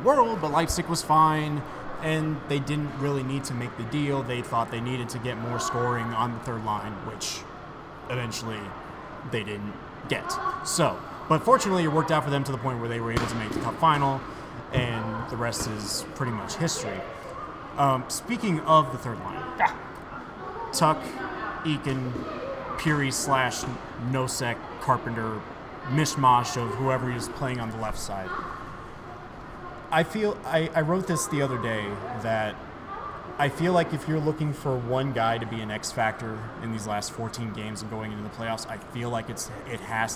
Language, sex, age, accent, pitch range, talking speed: English, male, 30-49, American, 110-140 Hz, 180 wpm